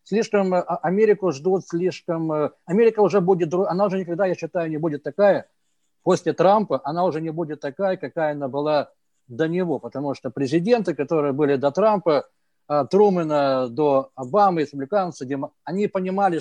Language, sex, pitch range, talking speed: English, male, 150-190 Hz, 155 wpm